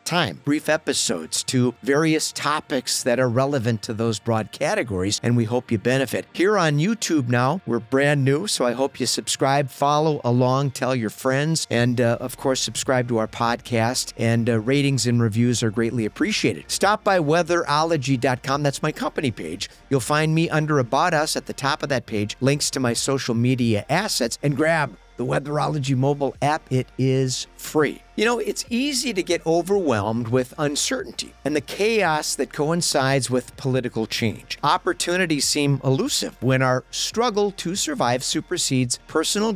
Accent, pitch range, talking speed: American, 120-165 Hz, 170 wpm